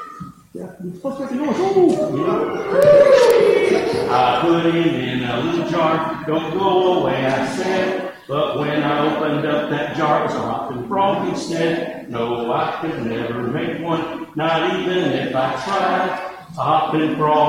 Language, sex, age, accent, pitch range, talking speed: English, male, 50-69, American, 155-210 Hz, 160 wpm